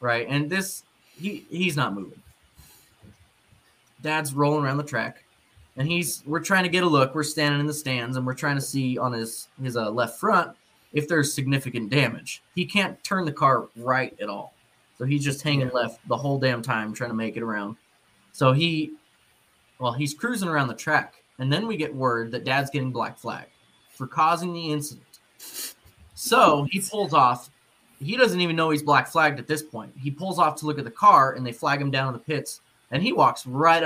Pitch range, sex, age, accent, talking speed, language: 125-155 Hz, male, 20-39, American, 205 wpm, English